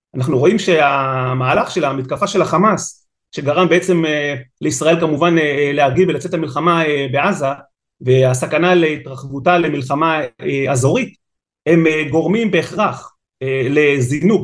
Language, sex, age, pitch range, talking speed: Hebrew, male, 30-49, 130-175 Hz, 95 wpm